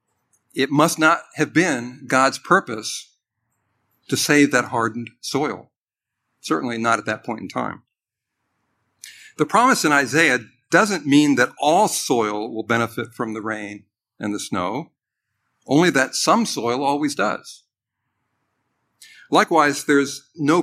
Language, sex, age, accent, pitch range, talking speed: English, male, 50-69, American, 115-155 Hz, 130 wpm